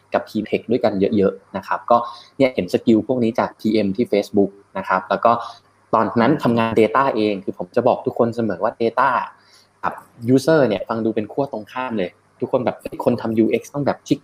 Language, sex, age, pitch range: Thai, male, 20-39, 110-135 Hz